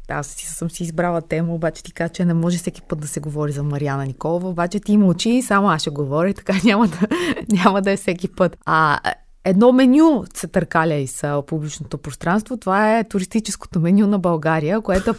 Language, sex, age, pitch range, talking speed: Bulgarian, female, 20-39, 170-210 Hz, 205 wpm